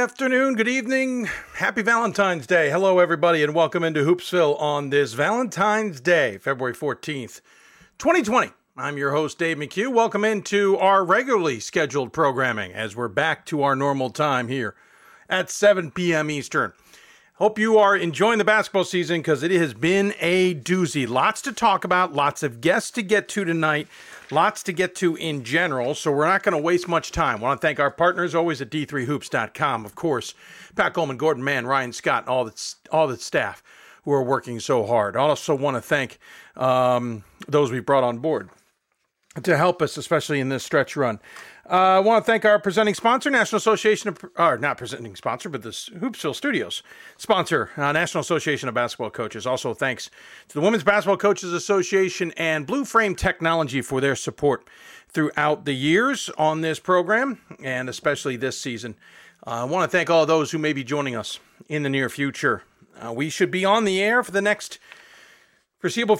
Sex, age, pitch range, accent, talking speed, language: male, 50-69, 145-200 Hz, American, 185 wpm, English